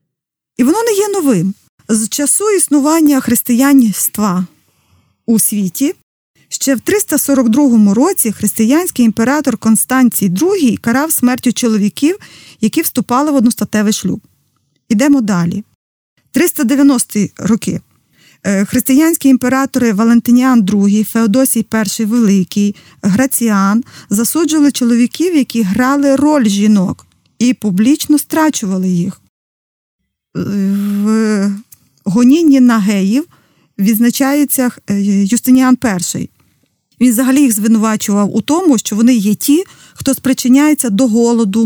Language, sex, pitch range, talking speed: Ukrainian, female, 210-275 Hz, 100 wpm